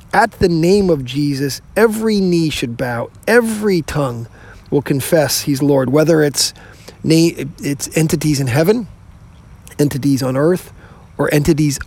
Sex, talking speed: male, 130 wpm